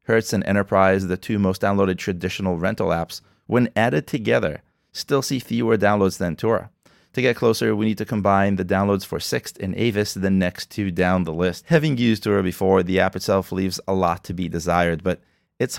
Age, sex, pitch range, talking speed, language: 30-49, male, 90-110 Hz, 200 wpm, English